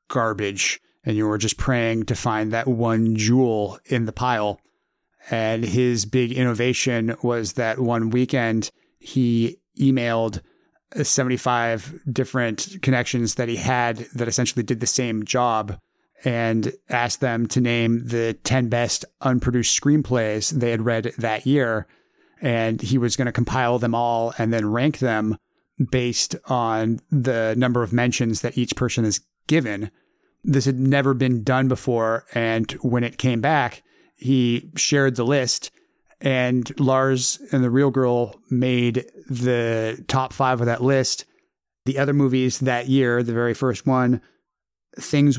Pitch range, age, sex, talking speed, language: 115-130 Hz, 30-49, male, 150 wpm, English